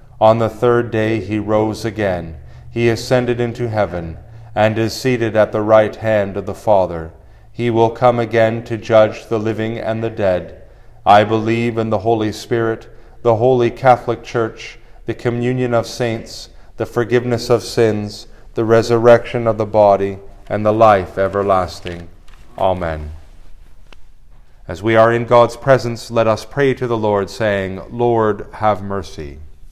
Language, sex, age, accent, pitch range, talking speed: English, male, 40-59, American, 95-115 Hz, 155 wpm